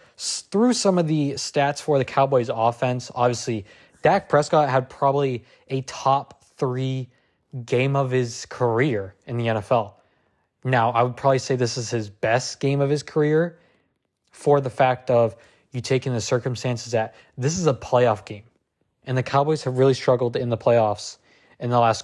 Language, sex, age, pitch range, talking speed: English, male, 20-39, 110-140 Hz, 170 wpm